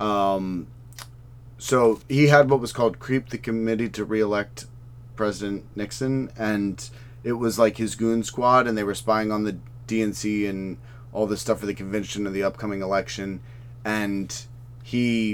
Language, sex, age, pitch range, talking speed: English, male, 30-49, 105-120 Hz, 160 wpm